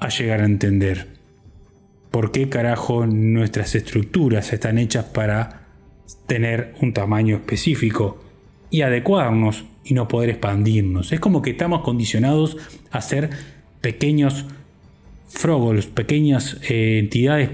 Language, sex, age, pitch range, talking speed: Spanish, male, 20-39, 110-135 Hz, 115 wpm